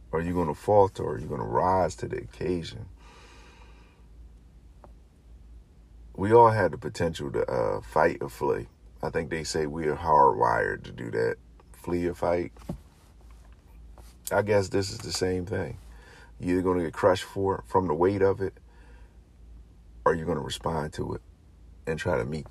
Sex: male